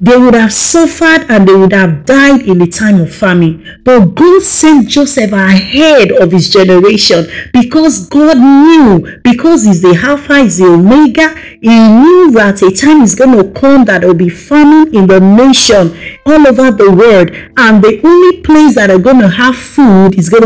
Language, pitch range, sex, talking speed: English, 190-280 Hz, female, 190 wpm